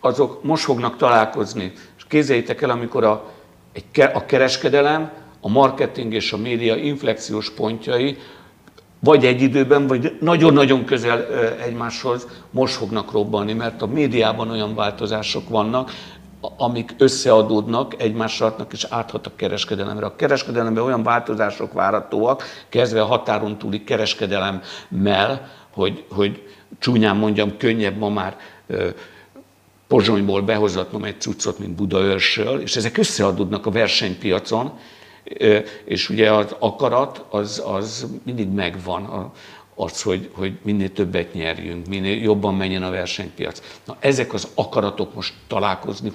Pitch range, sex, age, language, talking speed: 100-120 Hz, male, 60-79, Hungarian, 125 wpm